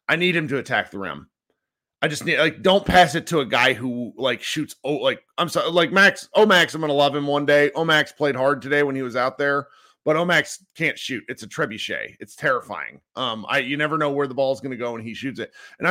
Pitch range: 135-180 Hz